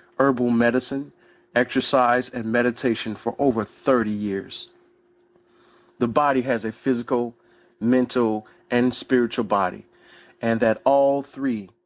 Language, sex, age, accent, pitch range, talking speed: English, male, 40-59, American, 115-130 Hz, 110 wpm